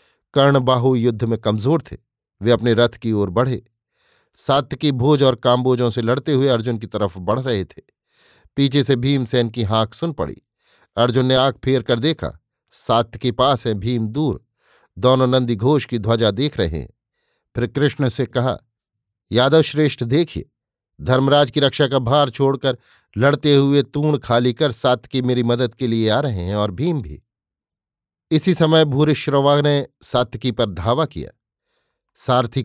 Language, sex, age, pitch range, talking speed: Hindi, male, 50-69, 120-145 Hz, 175 wpm